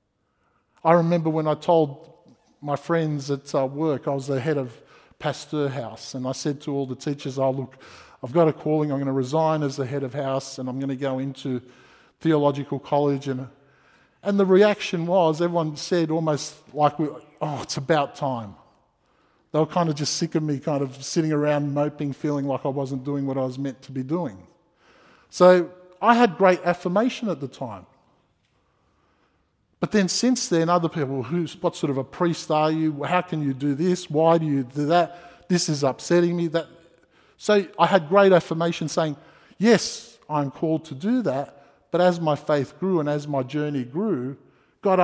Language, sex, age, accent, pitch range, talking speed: English, male, 50-69, Australian, 140-175 Hz, 190 wpm